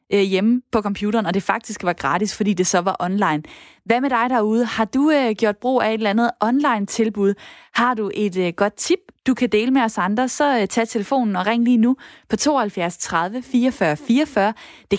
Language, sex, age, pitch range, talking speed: Danish, female, 20-39, 190-235 Hz, 200 wpm